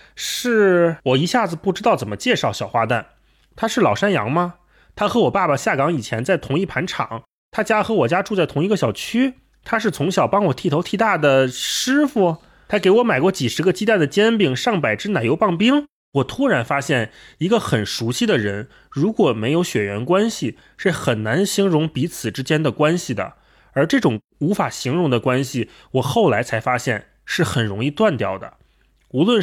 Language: Chinese